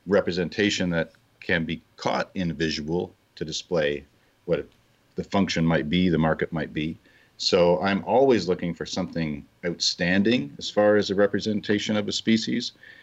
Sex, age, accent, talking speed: male, 50-69, American, 150 wpm